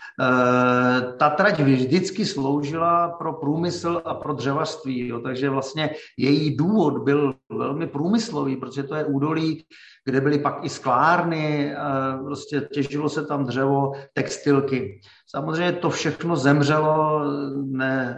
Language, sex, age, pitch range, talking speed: Czech, male, 50-69, 135-155 Hz, 120 wpm